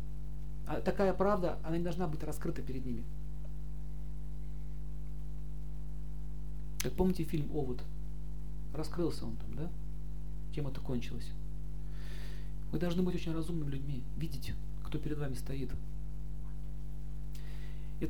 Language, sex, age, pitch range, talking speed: Russian, male, 40-59, 150-165 Hz, 110 wpm